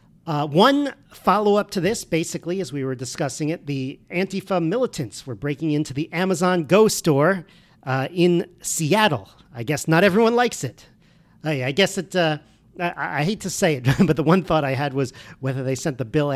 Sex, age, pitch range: male, 50-69, 135-180 Hz